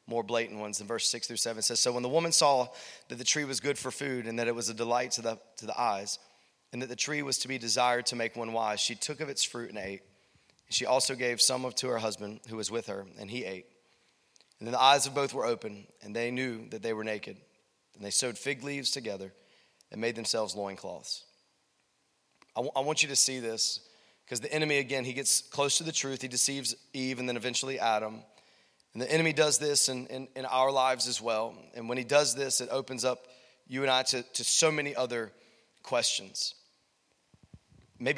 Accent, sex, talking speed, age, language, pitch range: American, male, 230 wpm, 30-49, English, 115-140 Hz